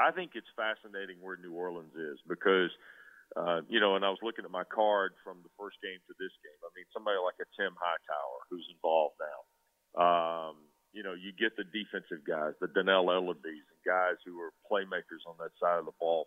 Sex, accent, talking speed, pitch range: male, American, 215 wpm, 90-115 Hz